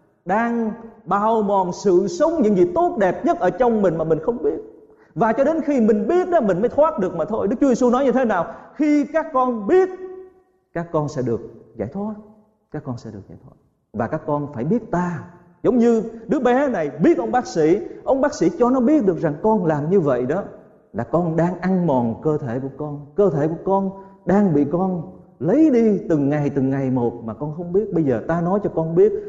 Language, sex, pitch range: Vietnamese, male, 150-220 Hz